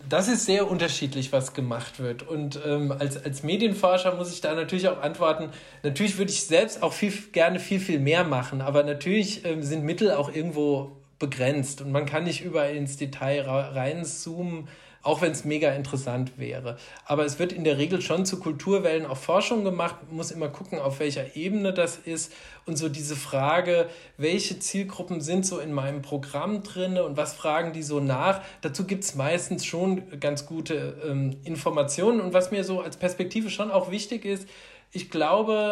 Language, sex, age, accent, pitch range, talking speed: German, male, 40-59, German, 150-195 Hz, 185 wpm